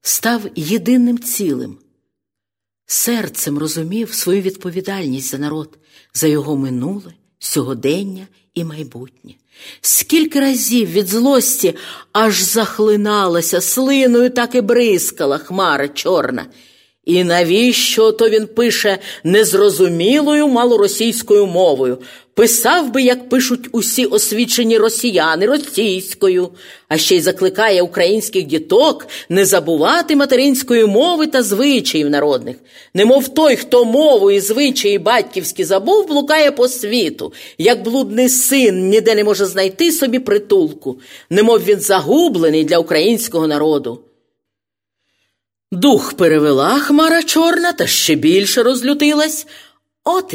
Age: 50-69